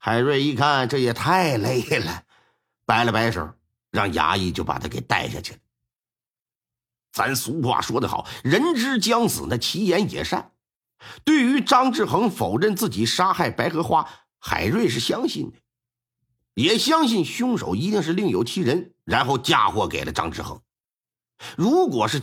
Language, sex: Chinese, male